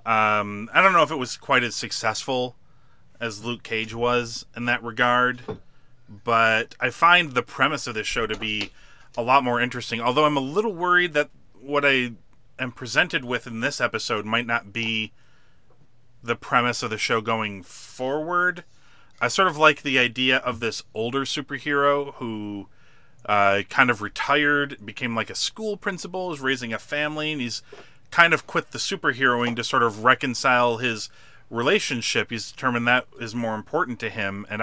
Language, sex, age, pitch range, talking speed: English, male, 30-49, 110-140 Hz, 175 wpm